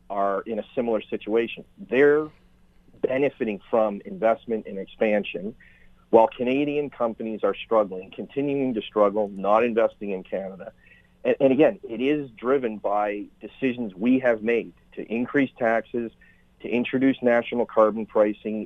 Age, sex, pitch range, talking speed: 40-59, male, 105-130 Hz, 135 wpm